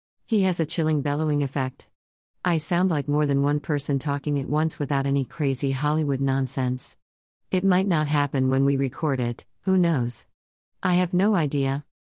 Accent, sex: American, female